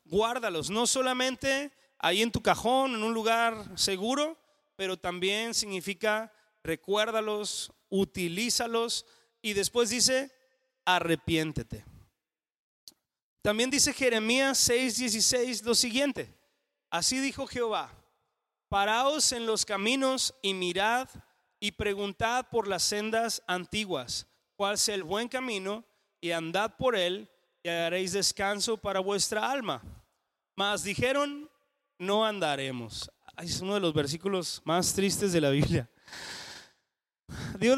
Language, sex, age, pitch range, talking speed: Spanish, male, 30-49, 185-250 Hz, 115 wpm